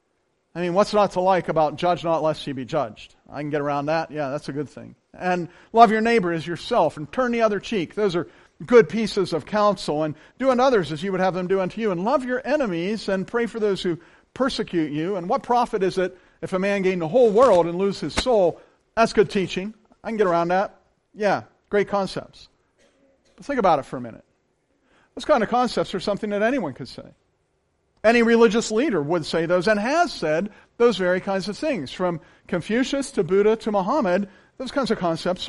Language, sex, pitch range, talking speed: English, male, 170-225 Hz, 220 wpm